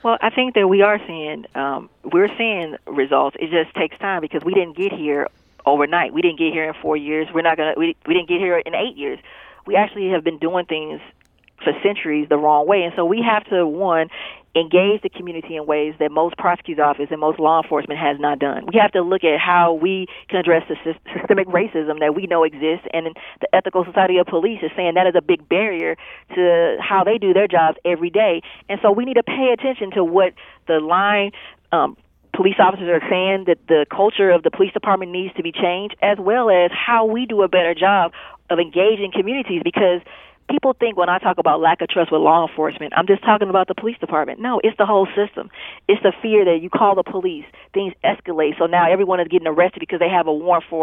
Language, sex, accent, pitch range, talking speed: English, female, American, 165-205 Hz, 230 wpm